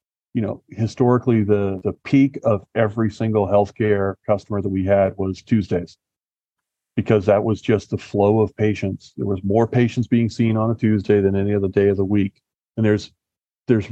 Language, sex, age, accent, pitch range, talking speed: English, male, 40-59, American, 100-120 Hz, 185 wpm